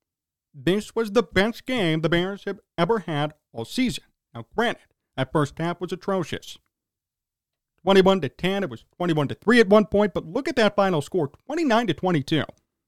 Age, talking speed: 40-59, 180 wpm